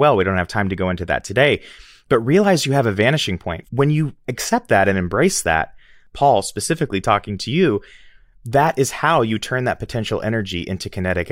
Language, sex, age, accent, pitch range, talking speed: English, male, 30-49, American, 95-125 Hz, 205 wpm